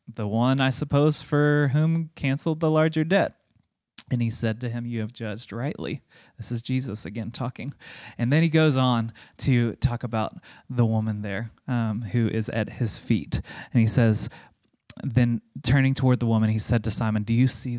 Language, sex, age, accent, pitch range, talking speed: English, male, 20-39, American, 115-130 Hz, 190 wpm